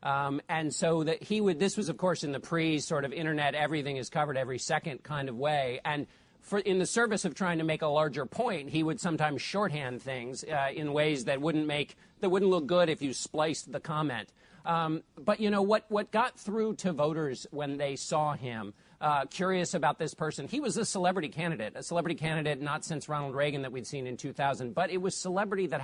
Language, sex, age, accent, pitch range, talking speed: English, male, 40-59, American, 150-185 Hz, 230 wpm